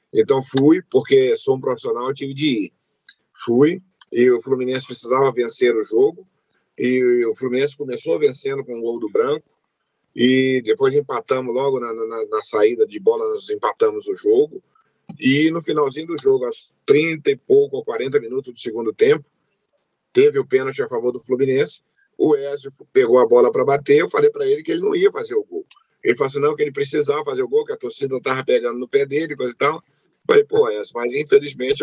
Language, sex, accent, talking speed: Portuguese, male, Brazilian, 205 wpm